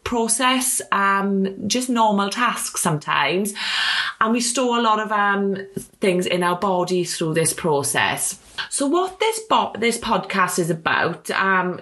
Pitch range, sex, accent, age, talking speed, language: 175-245 Hz, female, British, 30-49, 145 wpm, English